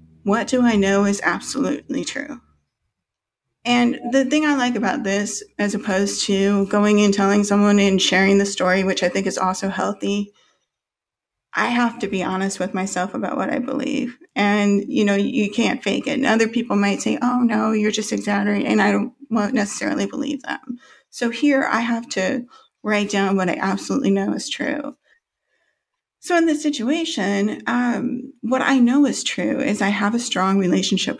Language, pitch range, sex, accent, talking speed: English, 195-260 Hz, female, American, 180 wpm